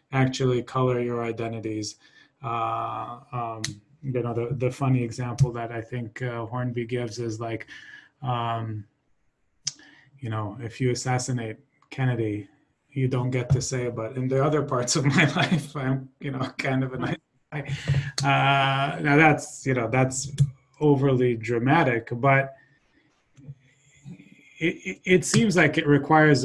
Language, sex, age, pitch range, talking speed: English, male, 20-39, 120-140 Hz, 140 wpm